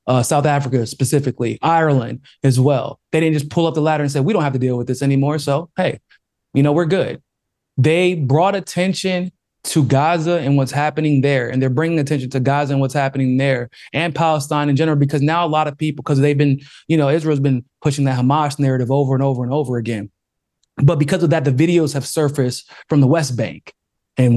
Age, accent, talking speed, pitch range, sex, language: 20-39, American, 220 wpm, 135-165 Hz, male, English